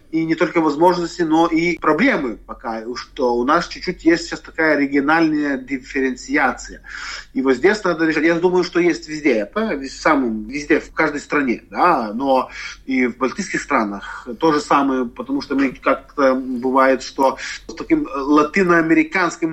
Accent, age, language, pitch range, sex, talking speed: native, 30-49, Russian, 140-190 Hz, male, 155 wpm